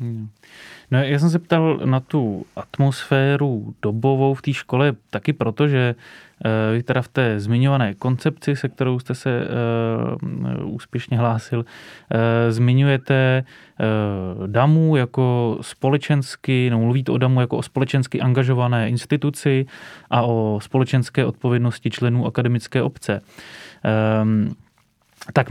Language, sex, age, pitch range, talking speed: Czech, male, 20-39, 115-130 Hz, 110 wpm